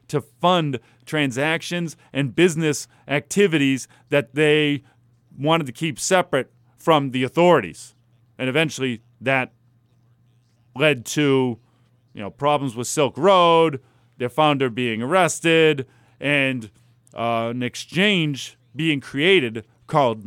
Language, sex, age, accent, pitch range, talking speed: English, male, 40-59, American, 125-175 Hz, 110 wpm